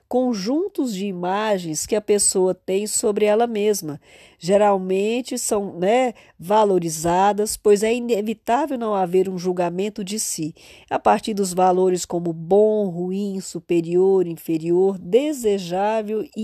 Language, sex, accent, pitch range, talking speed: Portuguese, female, Brazilian, 185-235 Hz, 125 wpm